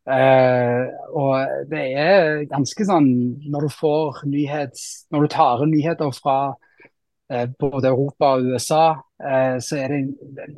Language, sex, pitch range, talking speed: English, male, 130-150 Hz, 160 wpm